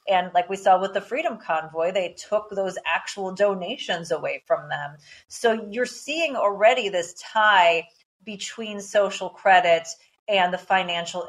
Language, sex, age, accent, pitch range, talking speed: English, female, 30-49, American, 185-235 Hz, 150 wpm